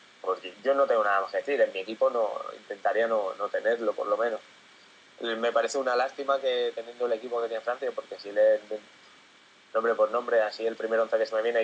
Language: Spanish